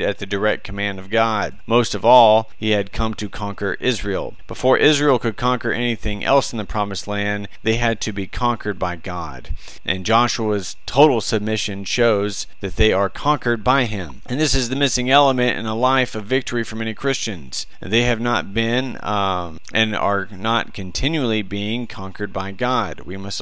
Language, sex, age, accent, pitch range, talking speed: English, male, 40-59, American, 100-115 Hz, 185 wpm